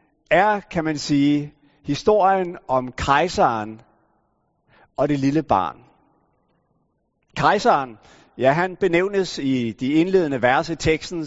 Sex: male